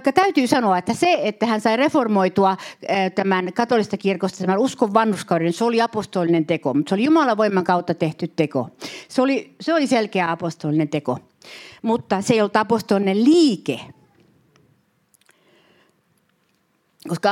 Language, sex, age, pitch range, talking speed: Finnish, female, 60-79, 165-220 Hz, 140 wpm